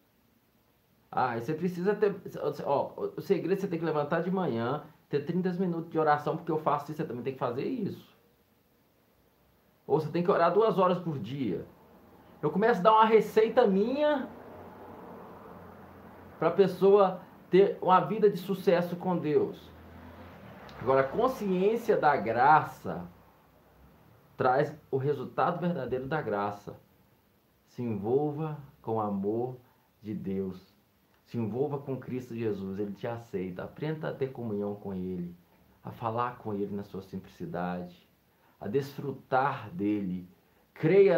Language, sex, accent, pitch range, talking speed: Portuguese, male, Brazilian, 110-180 Hz, 140 wpm